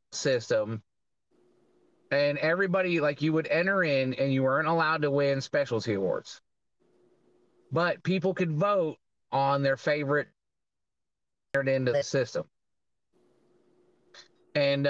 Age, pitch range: 30-49, 130-155 Hz